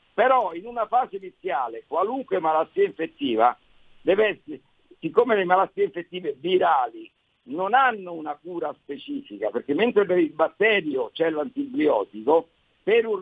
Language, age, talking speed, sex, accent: Italian, 50-69, 125 wpm, male, native